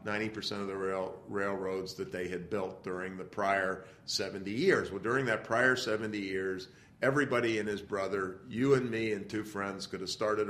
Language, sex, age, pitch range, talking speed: English, male, 50-69, 100-125 Hz, 190 wpm